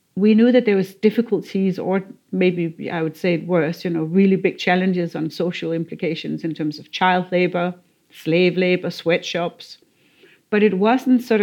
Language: English